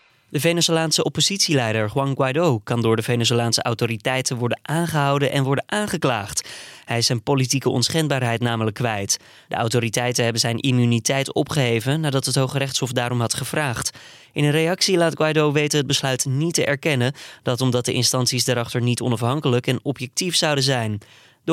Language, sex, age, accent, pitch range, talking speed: Dutch, male, 20-39, Dutch, 120-145 Hz, 160 wpm